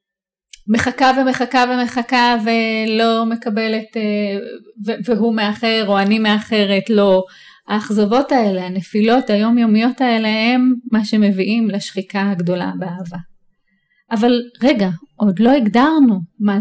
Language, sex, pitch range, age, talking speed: English, female, 205-275 Hz, 30-49, 100 wpm